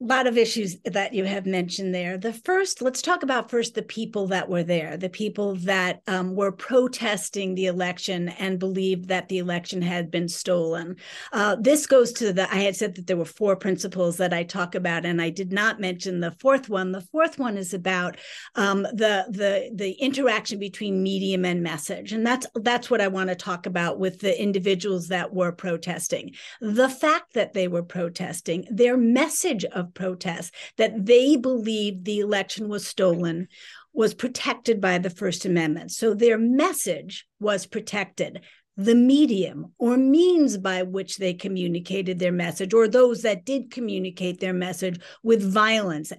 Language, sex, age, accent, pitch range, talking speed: English, female, 50-69, American, 185-235 Hz, 180 wpm